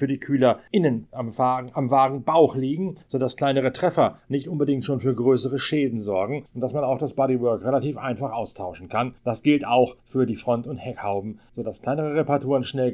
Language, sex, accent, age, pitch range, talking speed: German, male, German, 40-59, 120-150 Hz, 190 wpm